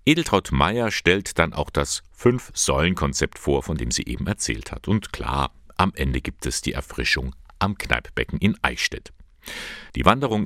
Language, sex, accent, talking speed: German, male, German, 160 wpm